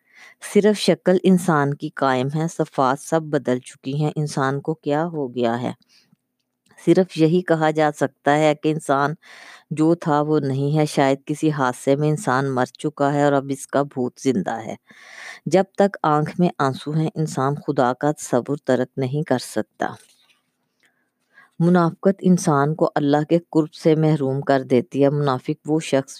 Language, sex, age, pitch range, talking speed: Urdu, female, 20-39, 135-155 Hz, 165 wpm